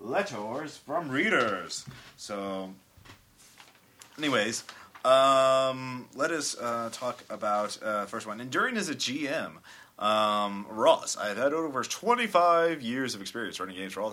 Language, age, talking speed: English, 30-49, 130 wpm